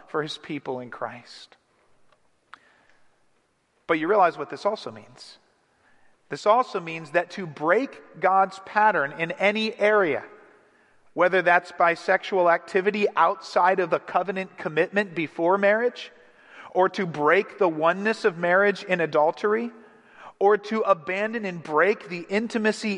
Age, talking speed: 40-59, 135 wpm